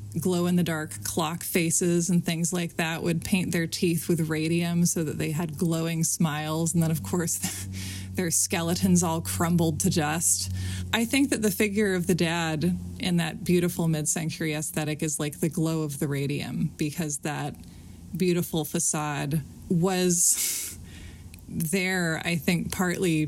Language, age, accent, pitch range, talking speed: English, 20-39, American, 155-185 Hz, 160 wpm